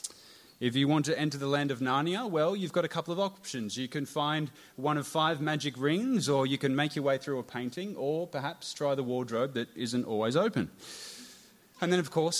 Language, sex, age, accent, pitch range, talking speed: English, male, 30-49, Australian, 125-155 Hz, 225 wpm